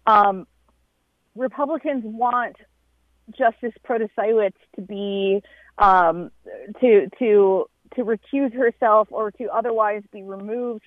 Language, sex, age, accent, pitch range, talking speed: English, female, 30-49, American, 200-240 Hz, 100 wpm